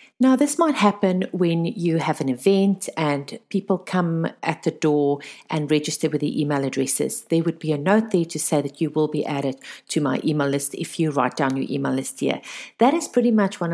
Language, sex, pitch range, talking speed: English, female, 150-195 Hz, 225 wpm